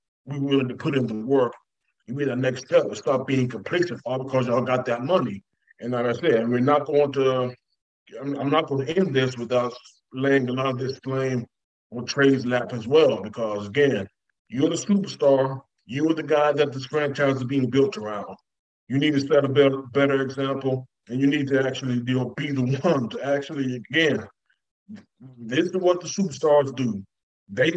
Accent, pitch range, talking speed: American, 125-145 Hz, 205 wpm